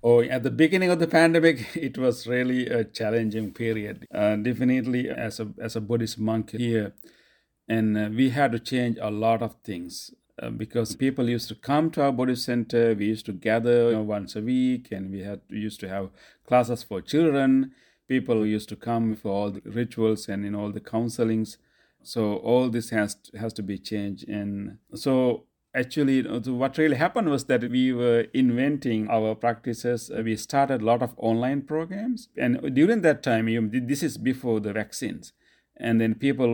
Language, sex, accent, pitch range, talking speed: English, male, Indian, 110-130 Hz, 195 wpm